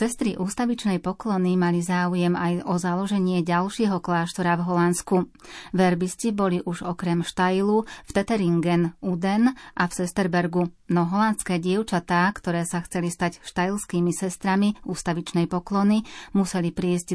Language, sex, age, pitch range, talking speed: Slovak, female, 30-49, 175-195 Hz, 125 wpm